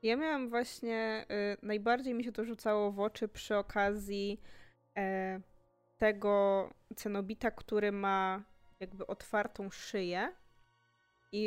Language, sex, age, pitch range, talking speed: Polish, female, 20-39, 190-235 Hz, 105 wpm